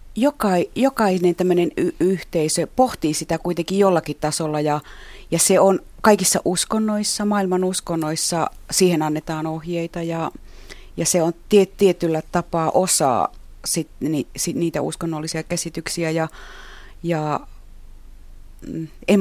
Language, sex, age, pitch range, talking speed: Finnish, female, 30-49, 140-180 Hz, 110 wpm